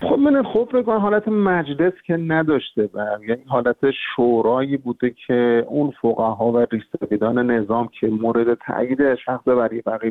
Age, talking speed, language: 50-69, 140 wpm, Persian